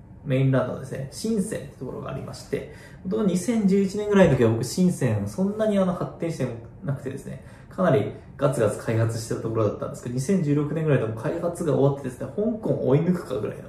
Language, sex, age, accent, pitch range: Japanese, male, 20-39, native, 120-175 Hz